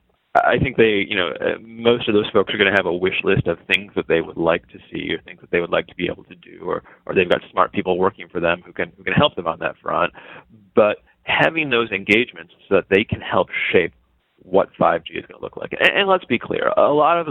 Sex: male